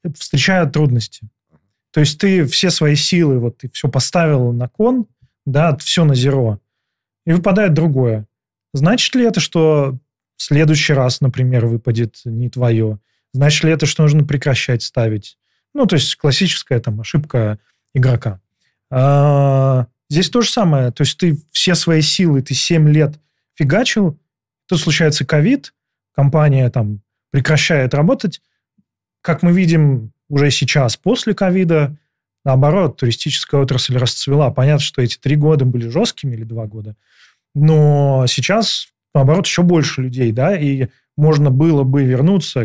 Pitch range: 125-165 Hz